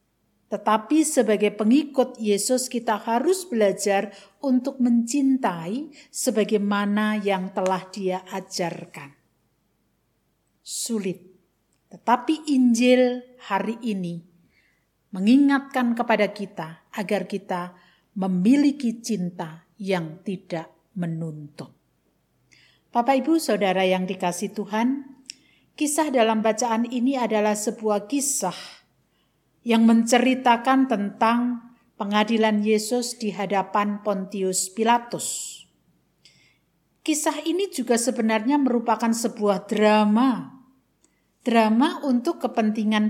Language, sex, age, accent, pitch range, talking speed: Indonesian, female, 50-69, native, 205-265 Hz, 85 wpm